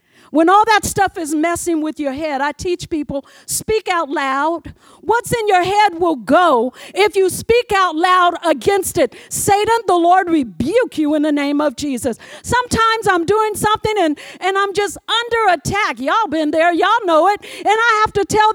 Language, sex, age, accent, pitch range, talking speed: English, female, 50-69, American, 310-410 Hz, 190 wpm